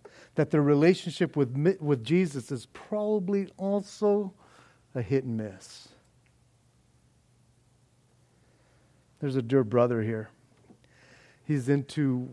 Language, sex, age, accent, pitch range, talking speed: English, male, 50-69, American, 115-140 Hz, 95 wpm